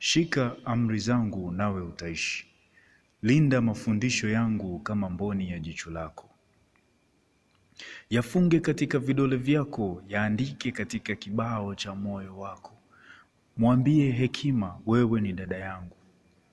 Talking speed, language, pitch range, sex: 105 wpm, Swahili, 100-125 Hz, male